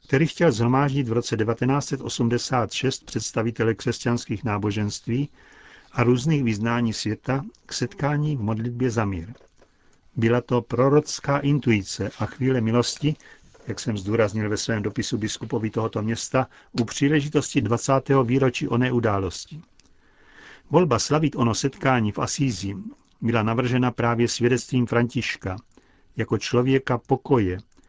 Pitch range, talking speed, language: 115-135 Hz, 120 wpm, Czech